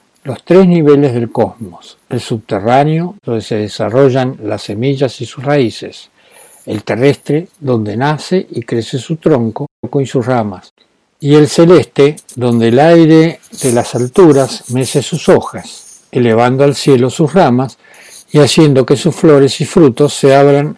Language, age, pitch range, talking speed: Spanish, 60-79, 120-150 Hz, 150 wpm